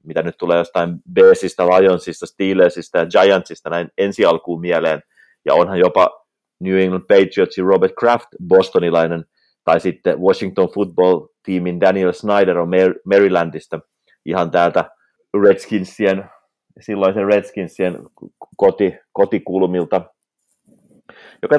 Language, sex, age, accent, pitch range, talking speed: Finnish, male, 30-49, native, 90-100 Hz, 105 wpm